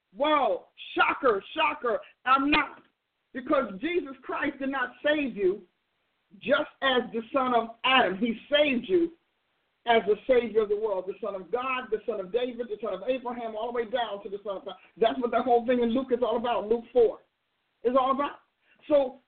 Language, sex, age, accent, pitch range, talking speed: English, male, 50-69, American, 245-315 Hz, 200 wpm